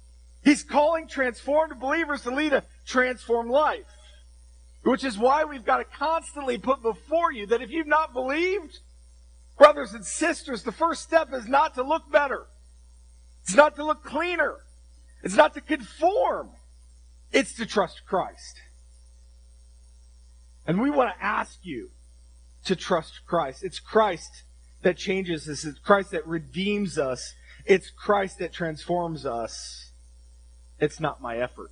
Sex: male